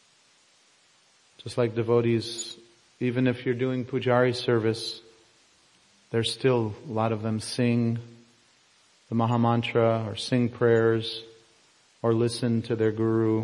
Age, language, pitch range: 40-59, English, 115-125 Hz